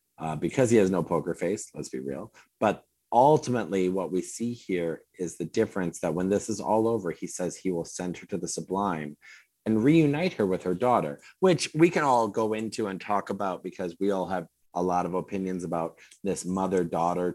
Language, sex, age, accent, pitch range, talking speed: English, male, 30-49, American, 90-115 Hz, 210 wpm